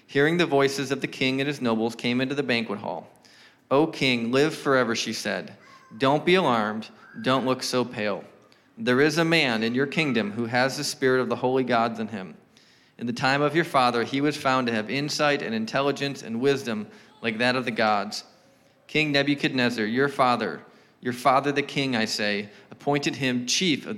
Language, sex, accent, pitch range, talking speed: English, male, American, 120-145 Hz, 200 wpm